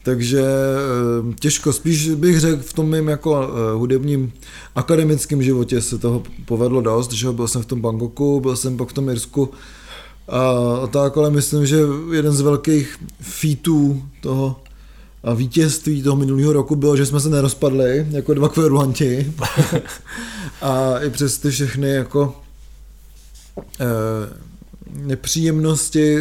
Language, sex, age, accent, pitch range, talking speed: Czech, male, 20-39, native, 125-150 Hz, 130 wpm